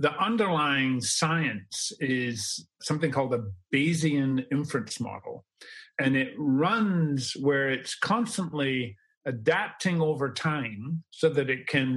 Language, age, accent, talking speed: English, 50-69, American, 115 wpm